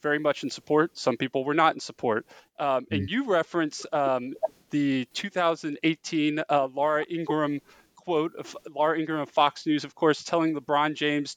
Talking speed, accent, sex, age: 170 wpm, American, male, 20-39